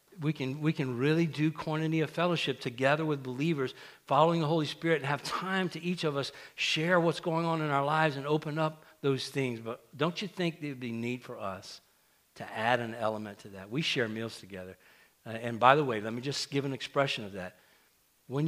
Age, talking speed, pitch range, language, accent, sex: 60-79, 220 wpm, 125-160 Hz, English, American, male